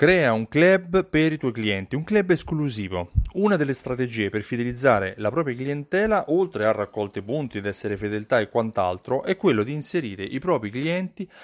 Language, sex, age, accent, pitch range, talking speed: Italian, male, 30-49, native, 110-160 Hz, 180 wpm